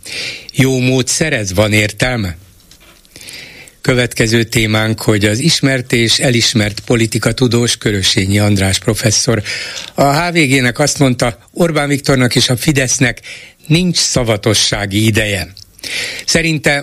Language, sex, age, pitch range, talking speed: Hungarian, male, 60-79, 105-135 Hz, 105 wpm